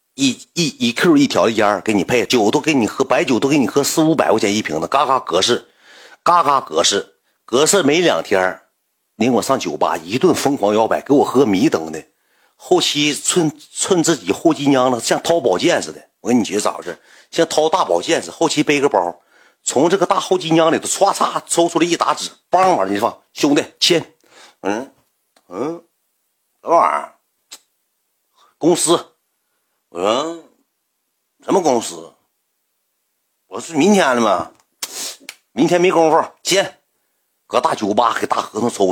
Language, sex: Chinese, male